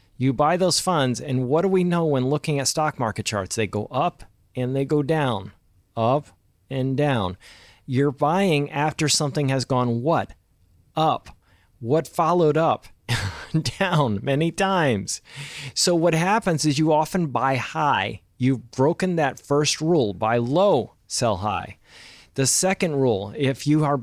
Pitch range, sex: 120-155 Hz, male